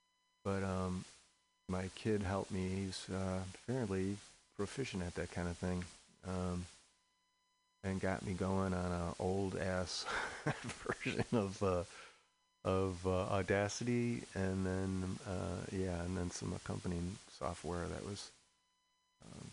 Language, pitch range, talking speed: English, 90-105 Hz, 125 wpm